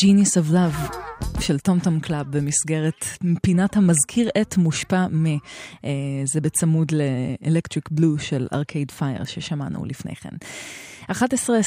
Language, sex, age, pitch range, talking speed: Hebrew, female, 20-39, 150-175 Hz, 120 wpm